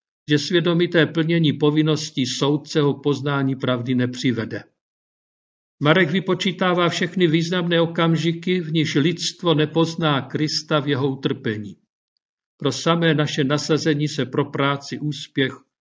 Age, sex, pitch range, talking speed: 50-69, male, 135-160 Hz, 110 wpm